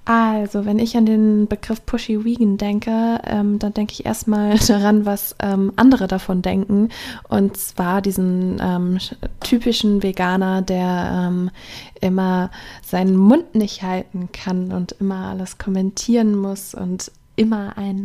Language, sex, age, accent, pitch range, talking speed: German, female, 20-39, German, 185-225 Hz, 140 wpm